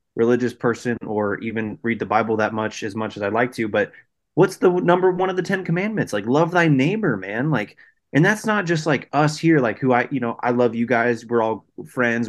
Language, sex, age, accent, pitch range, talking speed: English, male, 20-39, American, 110-140 Hz, 240 wpm